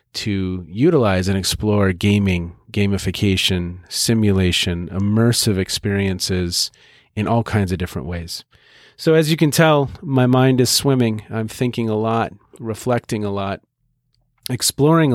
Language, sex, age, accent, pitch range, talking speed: English, male, 40-59, American, 100-145 Hz, 125 wpm